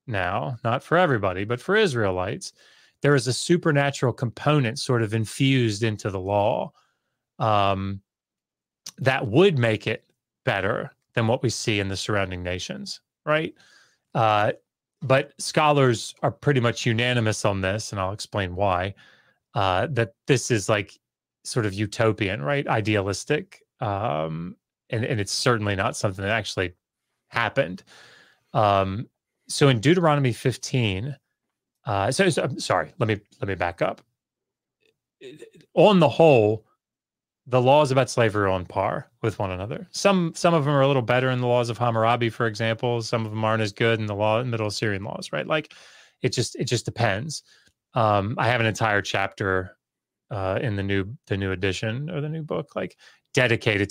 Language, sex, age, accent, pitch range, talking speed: English, male, 30-49, American, 100-135 Hz, 165 wpm